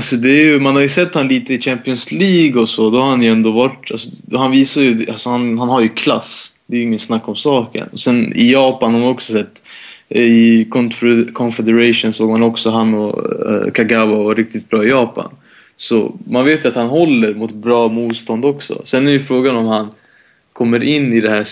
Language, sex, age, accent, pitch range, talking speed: Swedish, male, 20-39, Norwegian, 115-130 Hz, 225 wpm